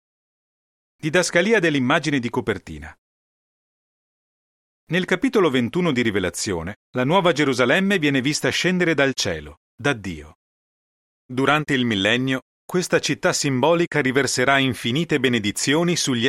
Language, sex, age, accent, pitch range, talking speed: Italian, male, 40-59, native, 105-155 Hz, 105 wpm